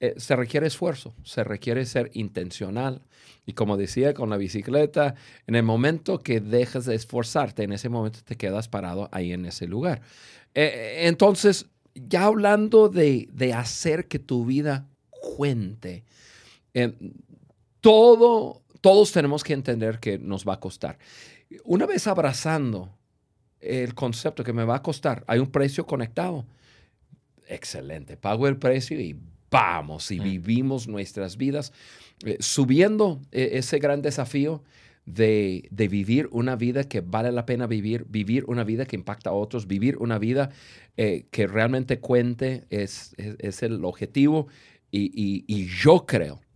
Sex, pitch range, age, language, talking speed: male, 110-145 Hz, 50-69, Spanish, 150 wpm